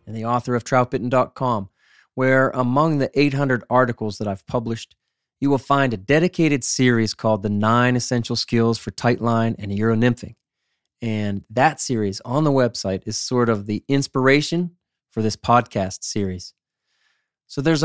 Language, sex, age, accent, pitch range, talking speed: English, male, 30-49, American, 110-135 Hz, 150 wpm